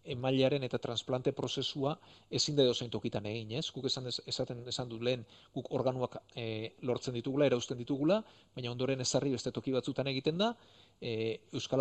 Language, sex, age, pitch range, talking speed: Spanish, male, 40-59, 115-135 Hz, 165 wpm